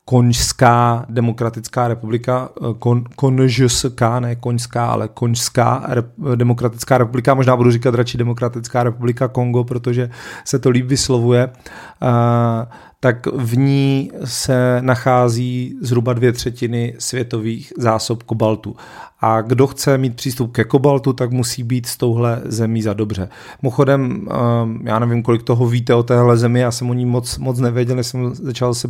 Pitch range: 115-125 Hz